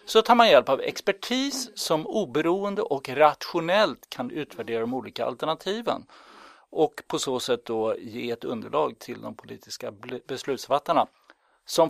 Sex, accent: male, native